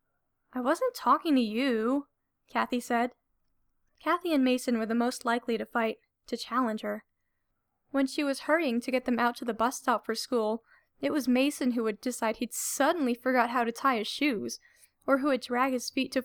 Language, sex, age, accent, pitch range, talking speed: English, female, 10-29, American, 225-270 Hz, 200 wpm